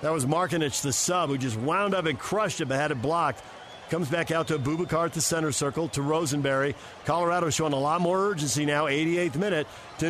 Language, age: English, 50-69